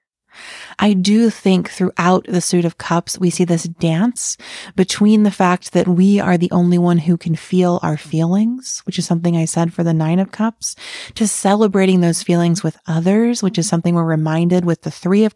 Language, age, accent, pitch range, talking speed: English, 30-49, American, 170-200 Hz, 200 wpm